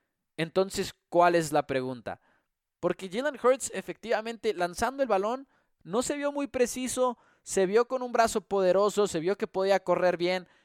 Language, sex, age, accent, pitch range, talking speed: English, male, 20-39, Mexican, 155-205 Hz, 165 wpm